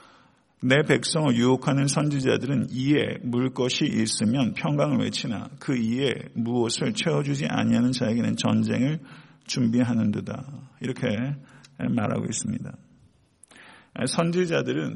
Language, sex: Korean, male